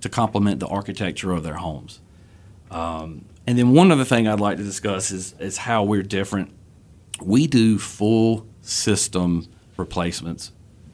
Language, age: English, 40-59